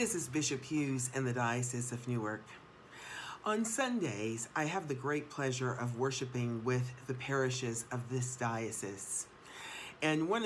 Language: English